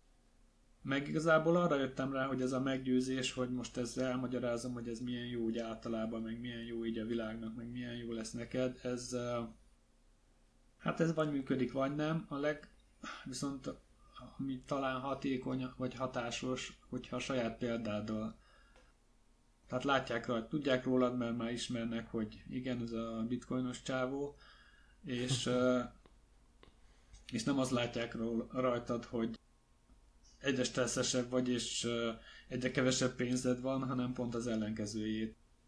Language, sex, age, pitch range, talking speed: Hungarian, male, 30-49, 115-130 Hz, 135 wpm